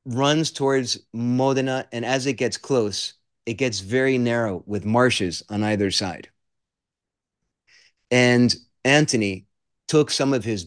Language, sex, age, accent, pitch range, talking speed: English, male, 30-49, American, 105-125 Hz, 130 wpm